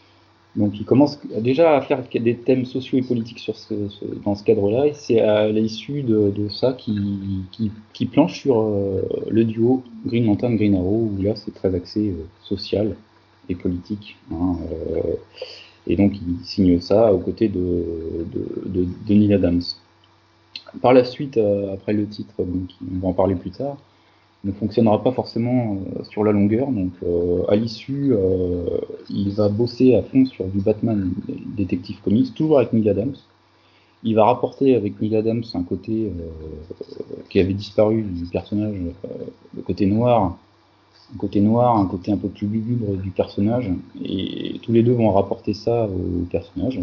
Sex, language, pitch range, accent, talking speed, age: male, French, 95-115 Hz, French, 175 wpm, 20-39